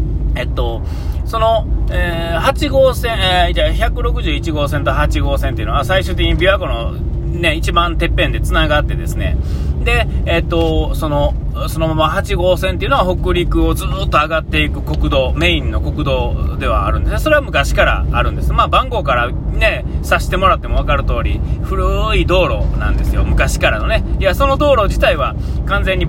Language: Japanese